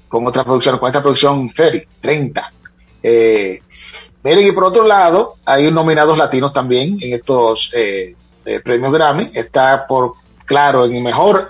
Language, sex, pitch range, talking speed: Spanish, male, 125-170 Hz, 155 wpm